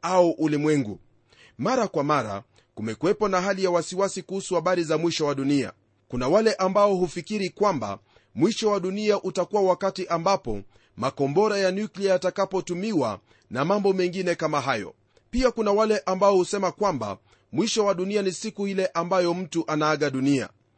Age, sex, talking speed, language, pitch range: 30-49, male, 150 wpm, Swahili, 155-205 Hz